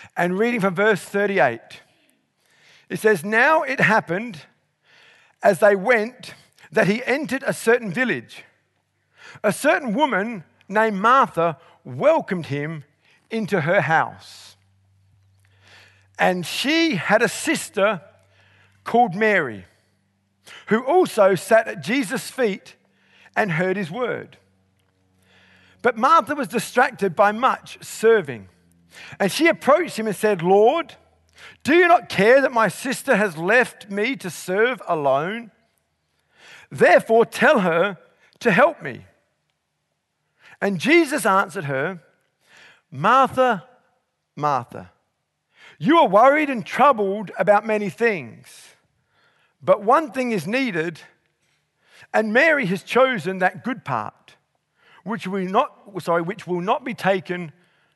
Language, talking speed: English, 120 wpm